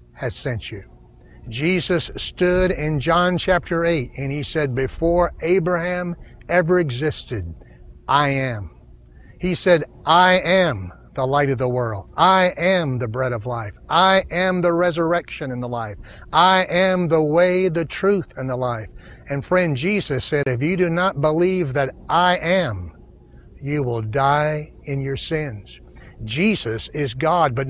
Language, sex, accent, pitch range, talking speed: English, male, American, 125-180 Hz, 150 wpm